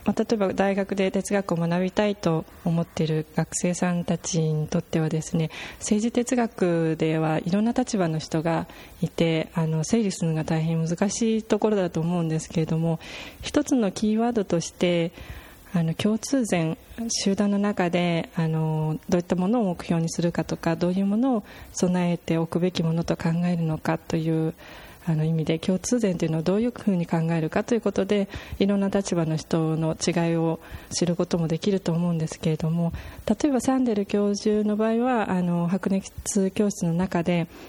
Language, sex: Japanese, female